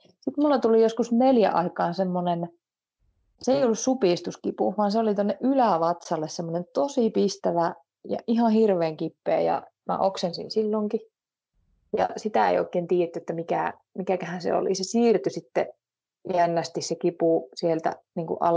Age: 30-49